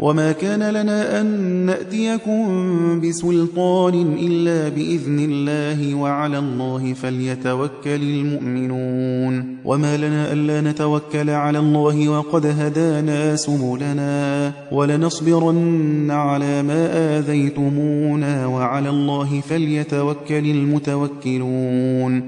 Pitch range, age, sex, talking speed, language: 140-170 Hz, 30-49, male, 80 wpm, Persian